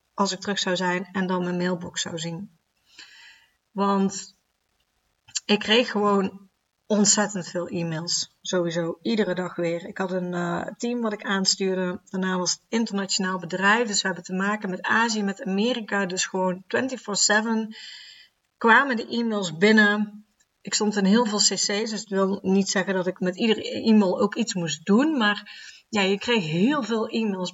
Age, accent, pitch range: 30-49, Dutch, 185-215 Hz